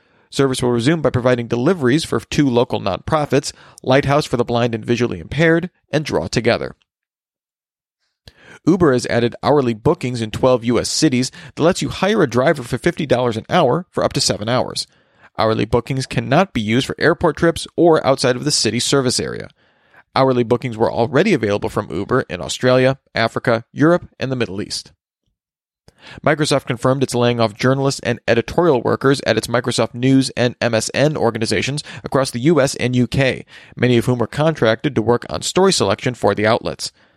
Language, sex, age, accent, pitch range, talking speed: English, male, 40-59, American, 115-145 Hz, 175 wpm